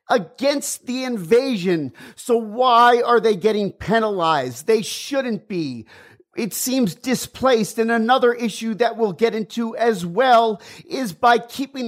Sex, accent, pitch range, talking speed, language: male, American, 160-225 Hz, 135 wpm, English